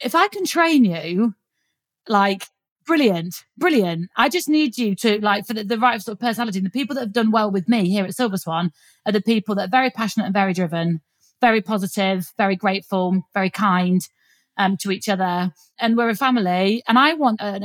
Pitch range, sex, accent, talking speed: 190-235 Hz, female, British, 205 wpm